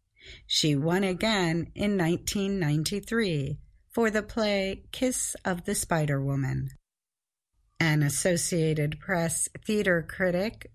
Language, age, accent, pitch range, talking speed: English, 50-69, American, 150-210 Hz, 95 wpm